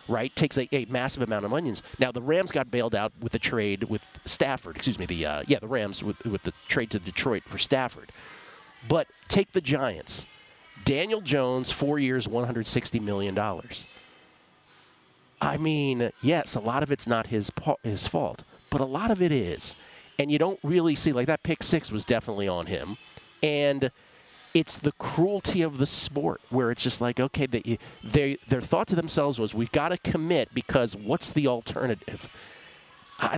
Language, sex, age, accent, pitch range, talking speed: English, male, 40-59, American, 115-150 Hz, 185 wpm